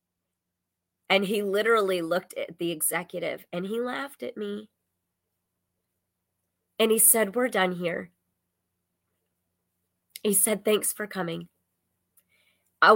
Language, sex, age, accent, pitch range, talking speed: English, female, 30-49, American, 155-220 Hz, 110 wpm